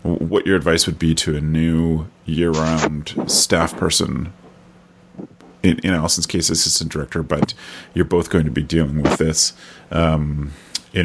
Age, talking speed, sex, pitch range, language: 30-49, 160 wpm, male, 80-90 Hz, English